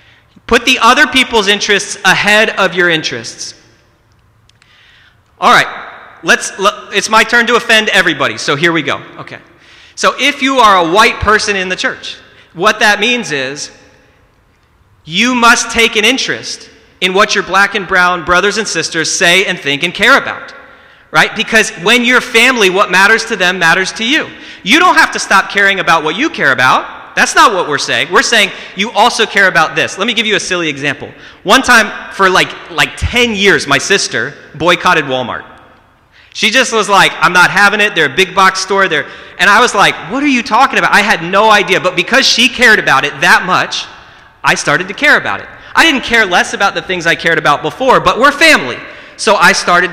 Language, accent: English, American